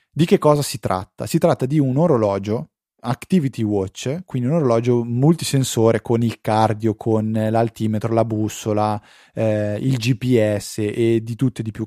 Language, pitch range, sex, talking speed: Italian, 105-140 Hz, male, 160 wpm